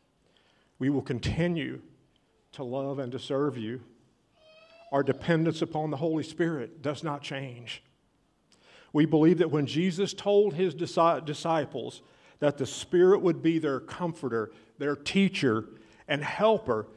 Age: 50-69